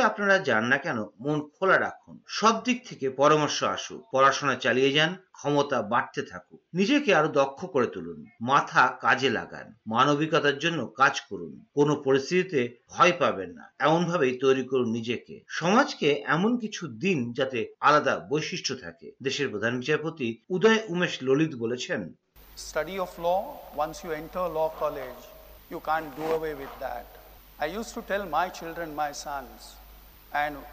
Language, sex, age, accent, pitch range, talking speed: Bengali, male, 50-69, native, 145-200 Hz, 40 wpm